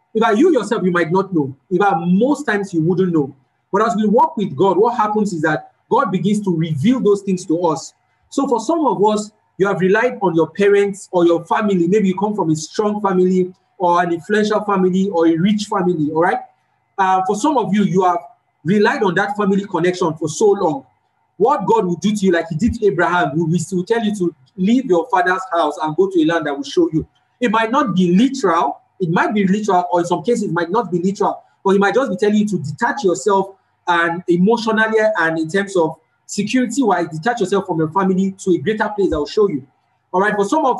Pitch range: 175-220 Hz